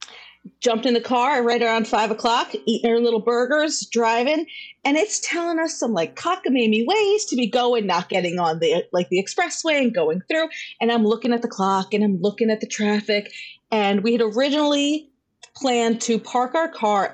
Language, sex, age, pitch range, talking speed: English, female, 30-49, 200-265 Hz, 195 wpm